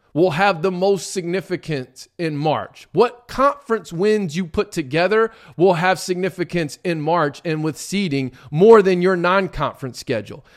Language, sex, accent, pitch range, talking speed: English, male, American, 150-210 Hz, 150 wpm